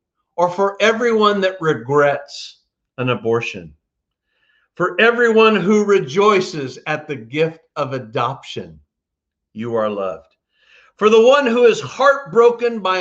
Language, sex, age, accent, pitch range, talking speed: English, male, 50-69, American, 140-205 Hz, 120 wpm